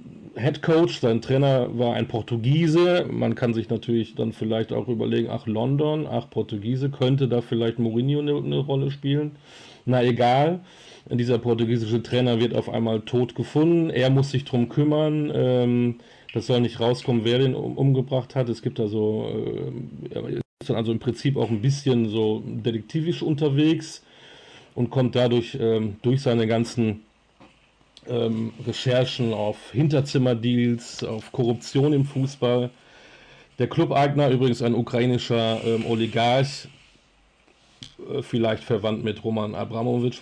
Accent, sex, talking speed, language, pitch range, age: German, male, 130 wpm, German, 115-130 Hz, 40-59